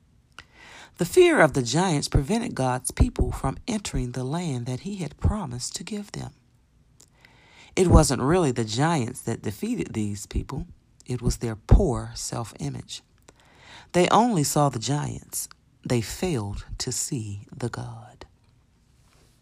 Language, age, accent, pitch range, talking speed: English, 40-59, American, 115-155 Hz, 135 wpm